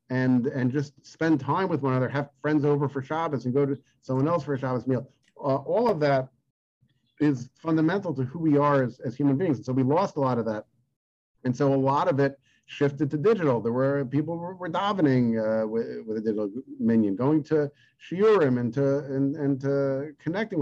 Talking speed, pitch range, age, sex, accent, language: 215 wpm, 120-145 Hz, 50-69, male, American, English